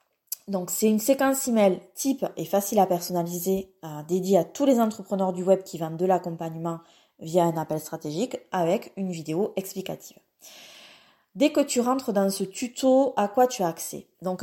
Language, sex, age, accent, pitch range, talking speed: French, female, 20-39, French, 175-225 Hz, 175 wpm